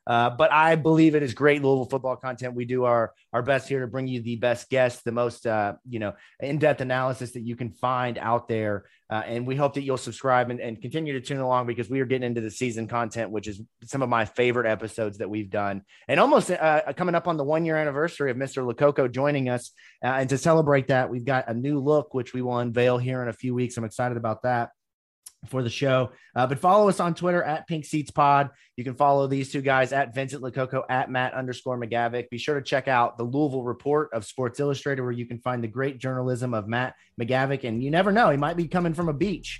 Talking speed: 245 wpm